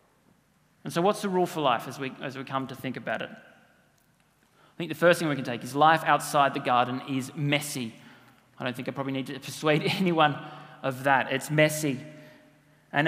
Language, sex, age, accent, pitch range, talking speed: English, male, 30-49, Australian, 135-165 Hz, 205 wpm